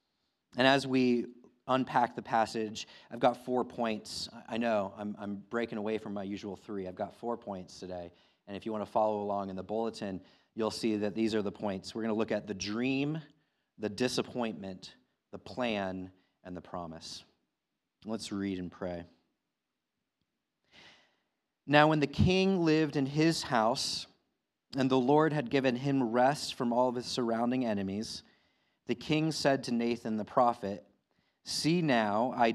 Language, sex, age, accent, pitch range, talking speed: English, male, 30-49, American, 100-125 Hz, 170 wpm